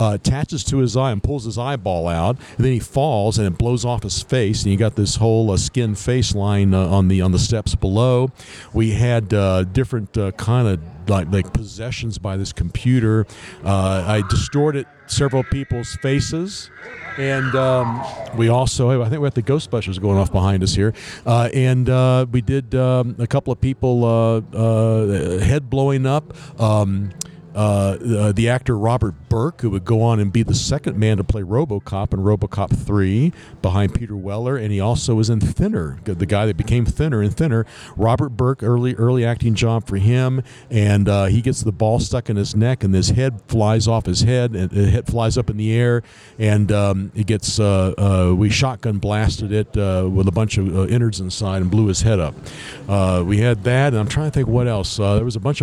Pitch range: 100-125 Hz